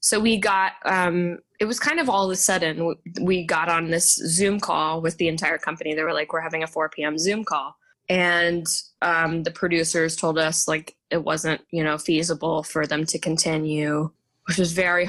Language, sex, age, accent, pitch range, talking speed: English, female, 10-29, American, 165-220 Hz, 205 wpm